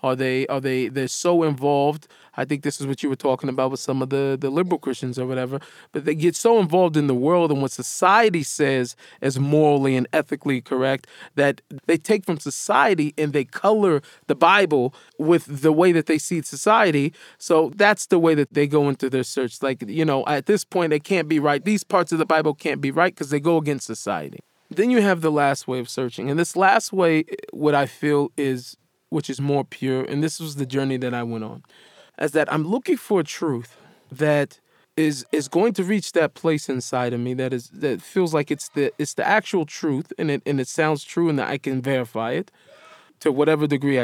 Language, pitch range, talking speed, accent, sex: English, 135-175 Hz, 225 wpm, American, male